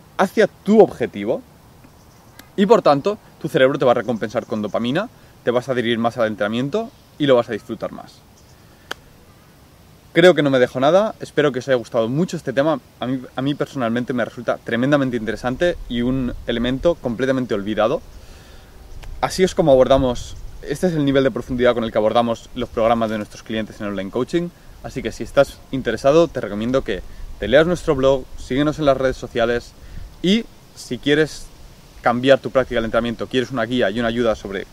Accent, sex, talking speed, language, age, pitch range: Spanish, male, 190 wpm, Spanish, 20-39, 115-140 Hz